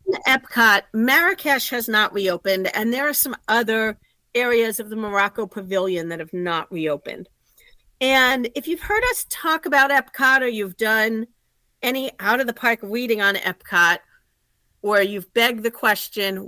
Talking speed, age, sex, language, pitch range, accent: 155 wpm, 40-59, female, English, 210-285 Hz, American